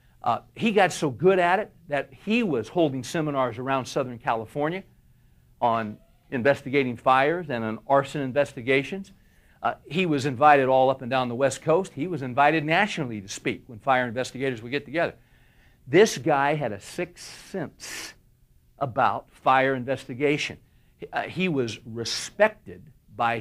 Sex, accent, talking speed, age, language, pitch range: male, American, 155 wpm, 60-79, English, 125-175 Hz